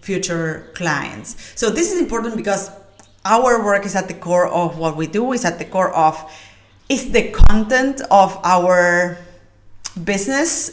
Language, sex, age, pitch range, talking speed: English, female, 30-49, 165-225 Hz, 155 wpm